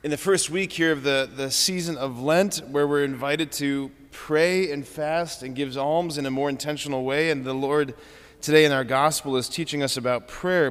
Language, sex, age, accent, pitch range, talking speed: English, male, 30-49, American, 130-165 Hz, 215 wpm